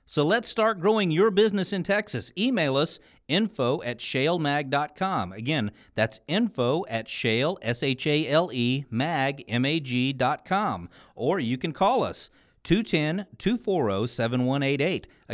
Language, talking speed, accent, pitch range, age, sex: English, 100 wpm, American, 120-175 Hz, 40-59, male